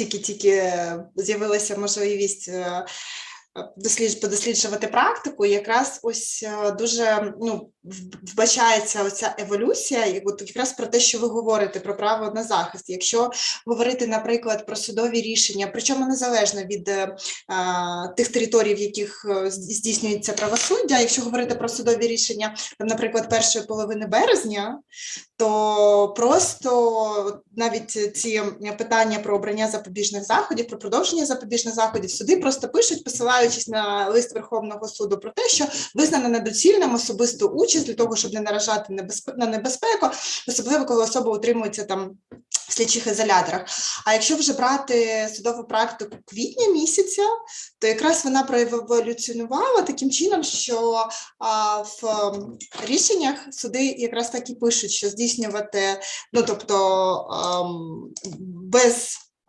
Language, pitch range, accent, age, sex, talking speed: Ukrainian, 210-245 Hz, native, 20-39, female, 120 wpm